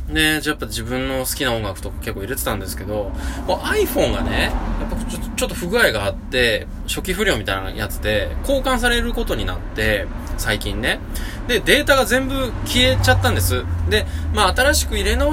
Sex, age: male, 20-39